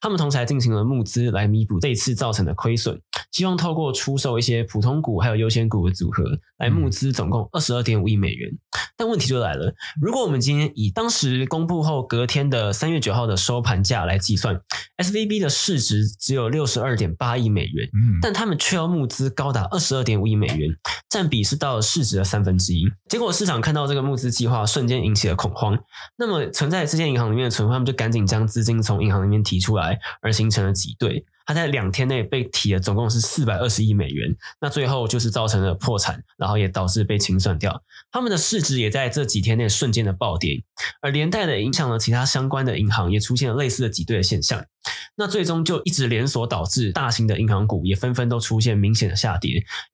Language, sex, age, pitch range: Chinese, male, 20-39, 105-135 Hz